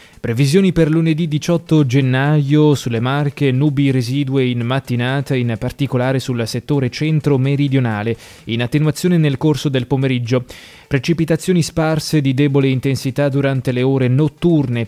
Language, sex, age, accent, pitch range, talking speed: Italian, male, 20-39, native, 125-150 Hz, 125 wpm